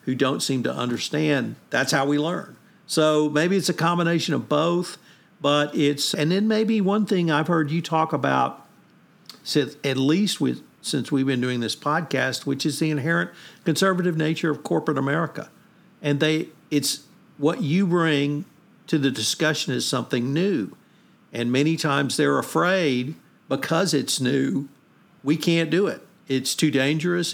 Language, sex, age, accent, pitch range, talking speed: English, male, 50-69, American, 145-180 Hz, 160 wpm